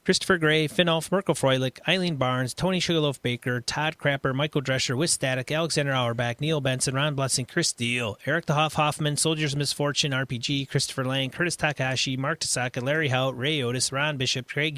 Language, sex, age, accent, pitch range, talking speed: English, male, 30-49, American, 135-165 Hz, 180 wpm